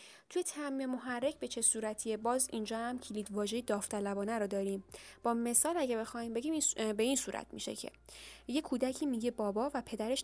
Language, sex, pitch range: Persian, female, 210-270 Hz